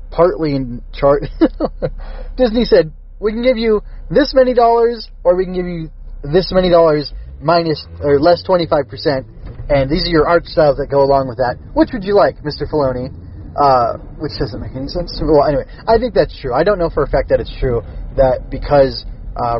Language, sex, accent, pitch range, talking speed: English, male, American, 135-170 Hz, 200 wpm